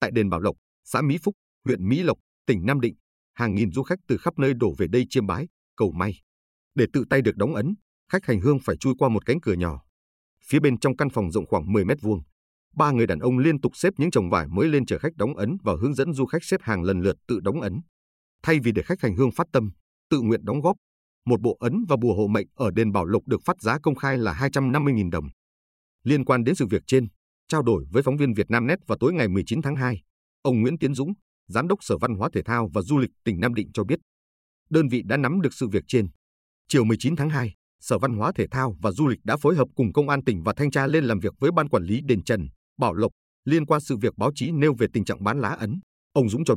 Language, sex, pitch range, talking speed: Vietnamese, male, 100-140 Hz, 265 wpm